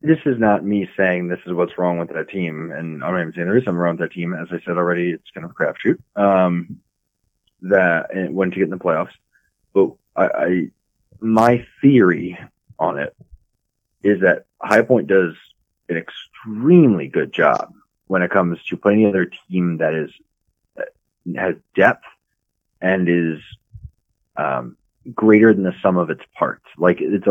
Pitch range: 85-105 Hz